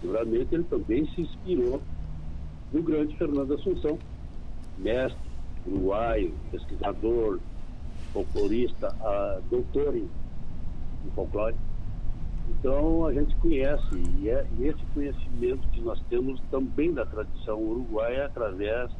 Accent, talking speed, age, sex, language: Brazilian, 105 wpm, 60-79, male, Portuguese